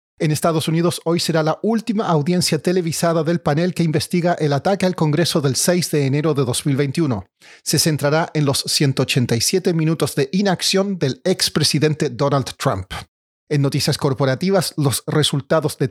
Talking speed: 155 wpm